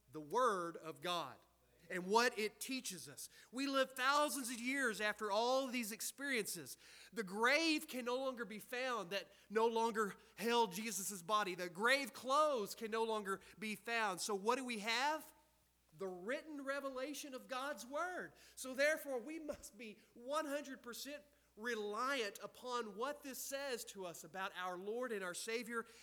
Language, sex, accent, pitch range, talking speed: English, male, American, 170-235 Hz, 160 wpm